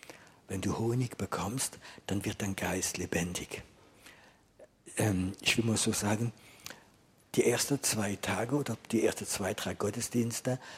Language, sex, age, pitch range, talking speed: German, male, 50-69, 110-145 Hz, 135 wpm